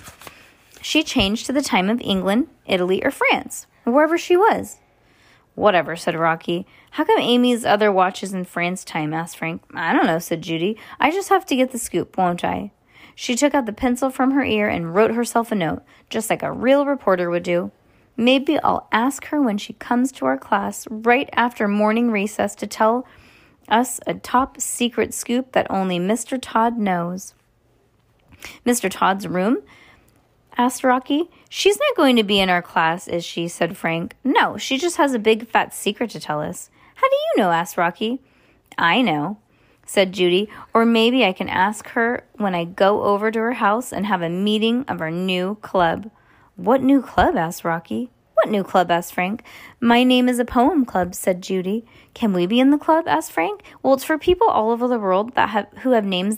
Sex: female